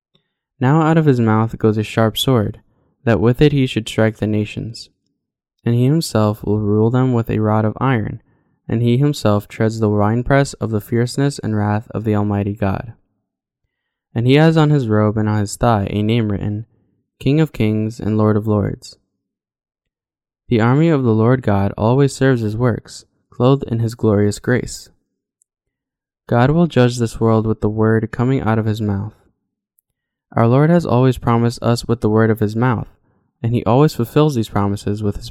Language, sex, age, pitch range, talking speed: English, male, 10-29, 105-125 Hz, 190 wpm